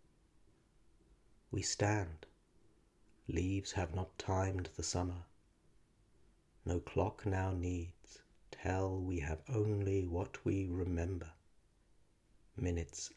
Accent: British